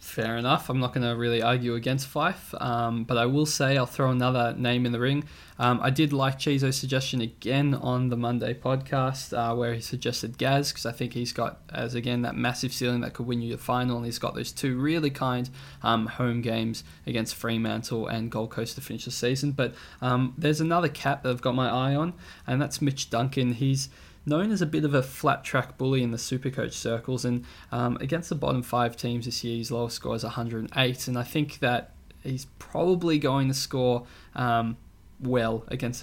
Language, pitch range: English, 115-135 Hz